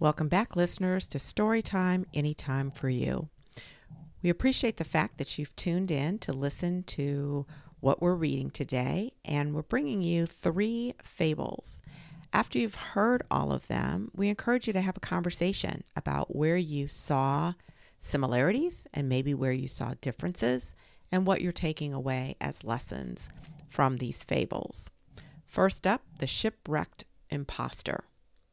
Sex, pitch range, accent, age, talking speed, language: female, 135-185 Hz, American, 50-69, 145 wpm, English